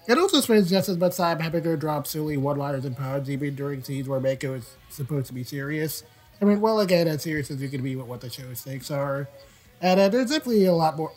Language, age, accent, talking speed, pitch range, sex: English, 30-49, American, 255 wpm, 135-175 Hz, male